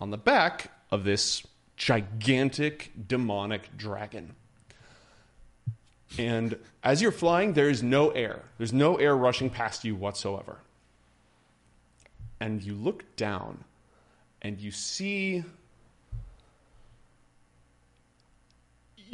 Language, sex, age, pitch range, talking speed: English, male, 30-49, 105-125 Hz, 95 wpm